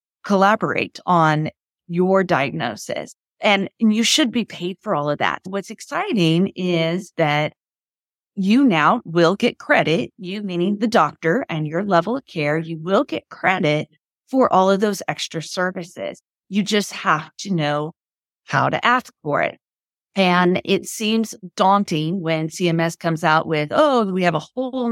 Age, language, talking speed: 30-49, English, 155 wpm